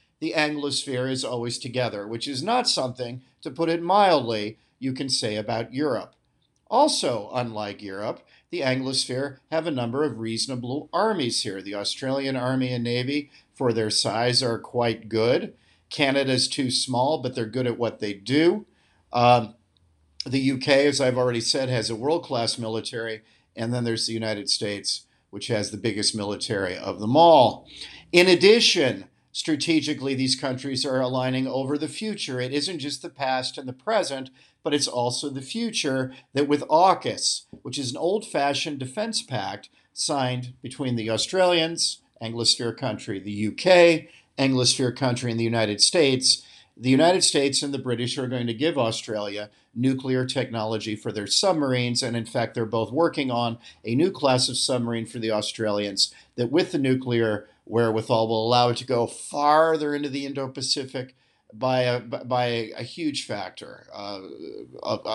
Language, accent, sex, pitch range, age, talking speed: English, American, male, 115-140 Hz, 50-69, 160 wpm